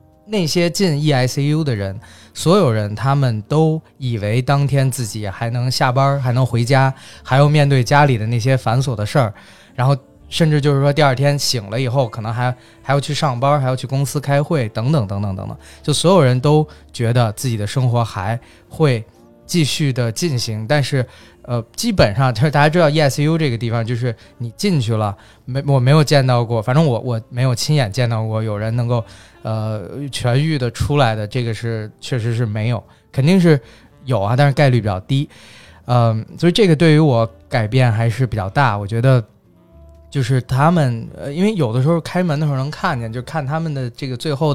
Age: 20-39